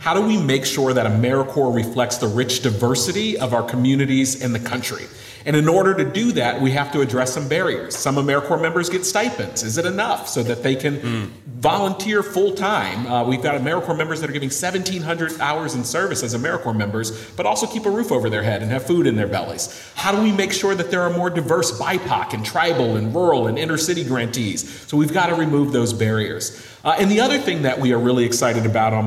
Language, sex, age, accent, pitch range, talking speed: English, male, 40-59, American, 120-170 Hz, 225 wpm